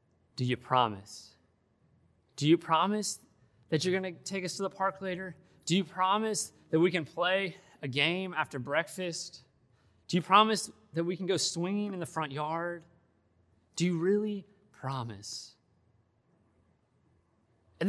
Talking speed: 150 wpm